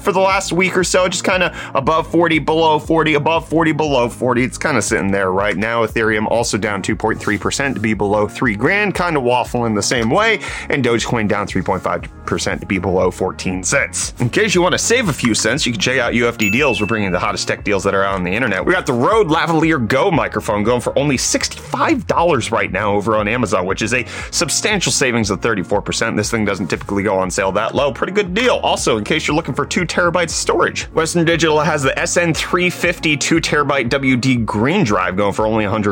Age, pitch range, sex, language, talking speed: 30-49, 105-165 Hz, male, English, 220 wpm